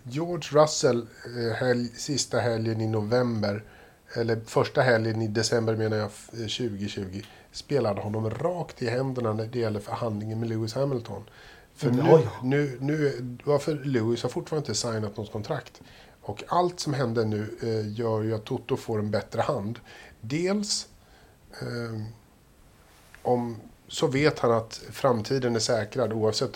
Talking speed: 135 wpm